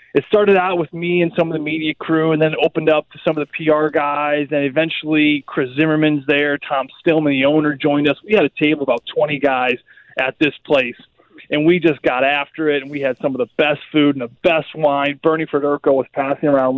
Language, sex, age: English, male, 20-39